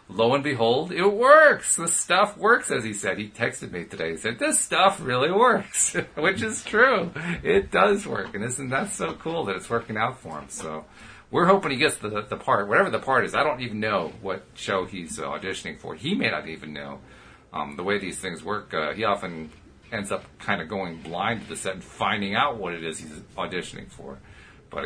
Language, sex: English, male